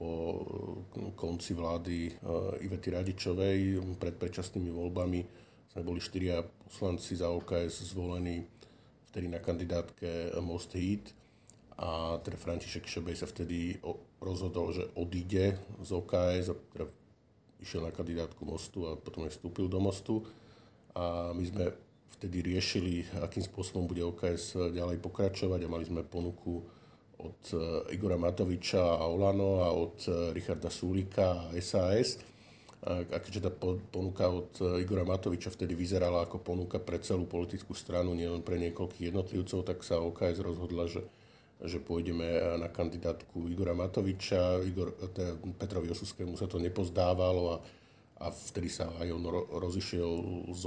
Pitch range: 85-95 Hz